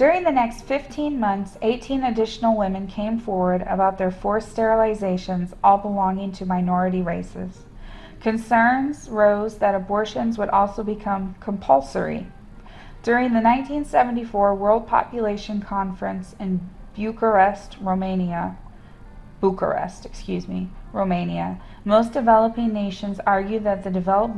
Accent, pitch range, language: American, 185-220 Hz, English